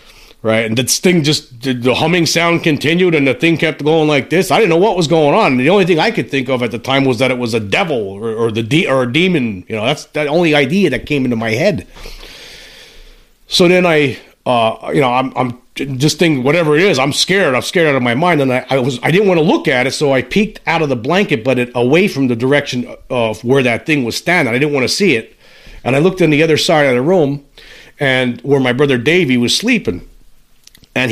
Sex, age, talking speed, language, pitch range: male, 40-59, 255 wpm, English, 125-165 Hz